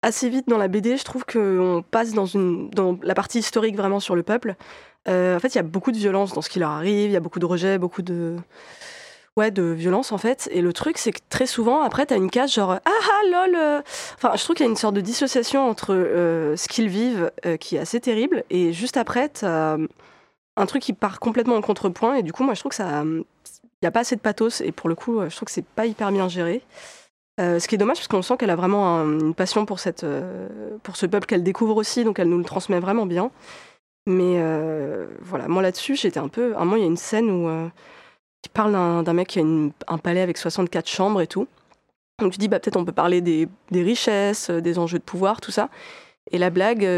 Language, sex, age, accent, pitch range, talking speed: French, female, 20-39, French, 180-245 Hz, 260 wpm